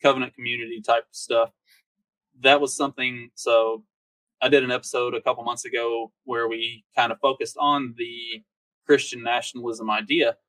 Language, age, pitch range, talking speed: English, 20-39, 115-145 Hz, 155 wpm